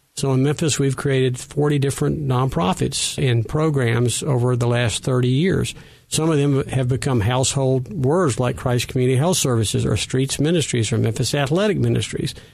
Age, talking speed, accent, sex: 50-69, 165 wpm, American, male